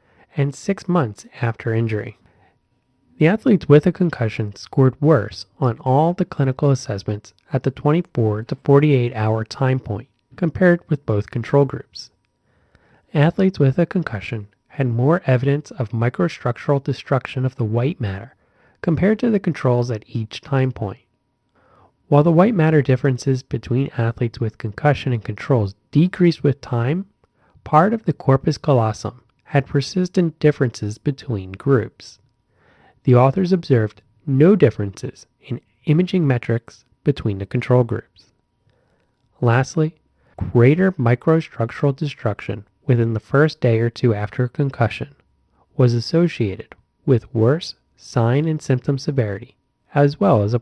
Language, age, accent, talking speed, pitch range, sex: English, 30-49, American, 135 wpm, 115-145 Hz, male